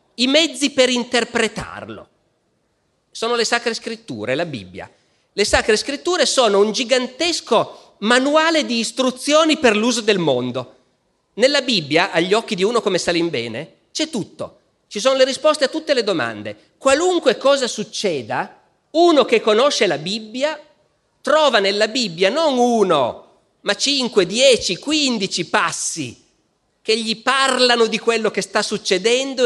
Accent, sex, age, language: native, male, 40-59, Italian